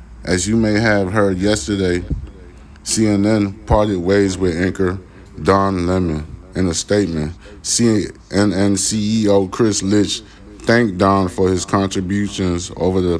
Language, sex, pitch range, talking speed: English, male, 85-100 Hz, 125 wpm